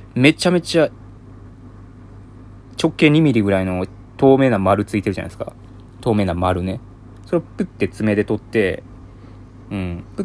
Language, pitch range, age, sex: Japanese, 95-120 Hz, 20-39, male